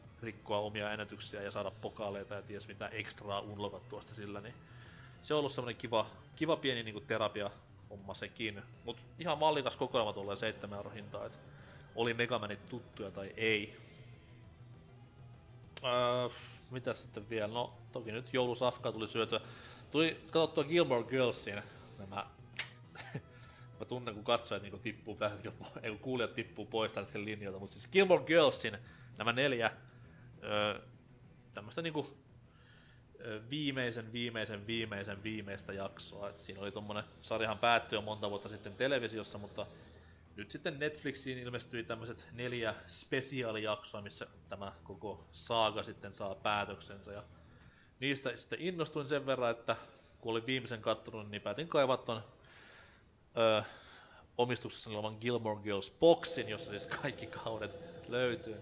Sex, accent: male, native